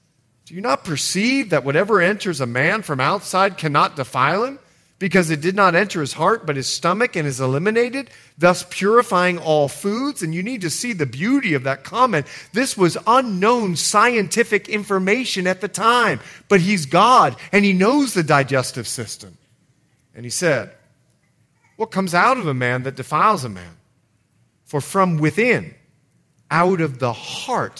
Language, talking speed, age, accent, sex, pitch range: English, 170 wpm, 40-59, American, male, 135-210 Hz